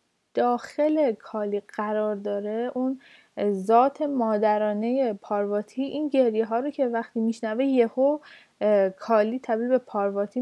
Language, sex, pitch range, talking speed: Persian, female, 210-270 Hz, 115 wpm